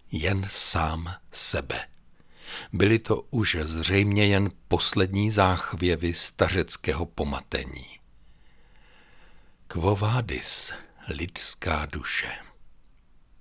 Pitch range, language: 90-125 Hz, Czech